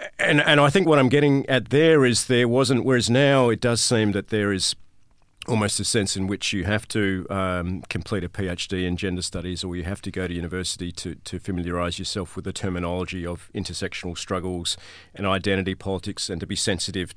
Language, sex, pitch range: English, male, 90-110 Hz